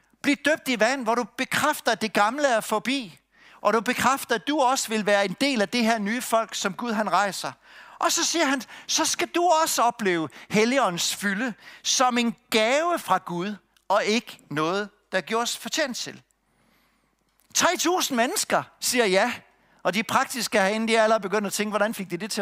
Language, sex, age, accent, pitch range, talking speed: Danish, male, 60-79, native, 200-270 Hz, 195 wpm